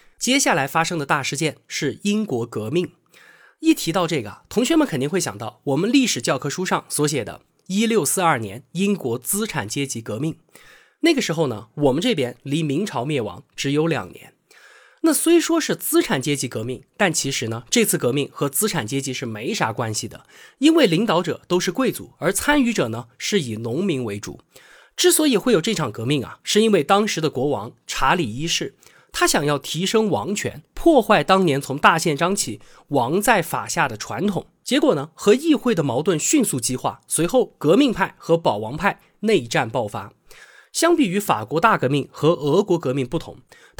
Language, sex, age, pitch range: Chinese, male, 20-39, 135-225 Hz